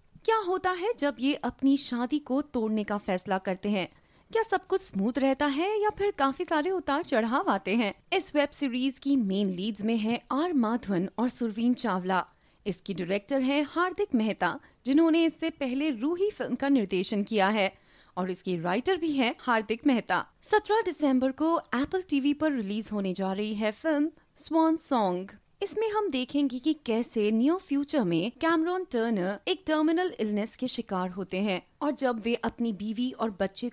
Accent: native